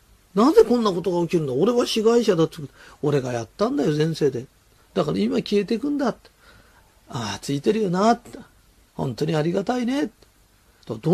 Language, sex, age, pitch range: Japanese, male, 40-59, 150-230 Hz